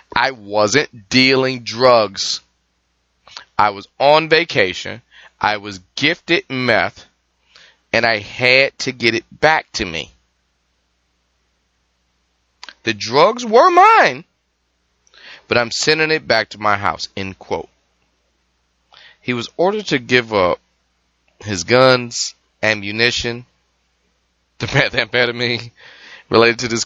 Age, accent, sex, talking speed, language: 30-49, American, male, 110 wpm, English